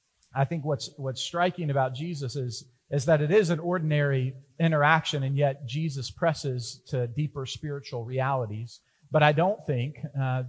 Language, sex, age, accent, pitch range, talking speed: English, male, 40-59, American, 130-155 Hz, 160 wpm